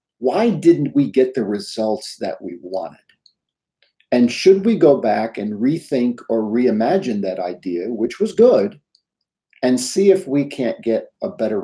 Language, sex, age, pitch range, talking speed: English, male, 50-69, 105-140 Hz, 160 wpm